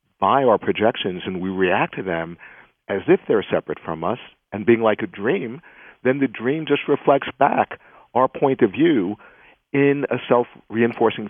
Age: 50-69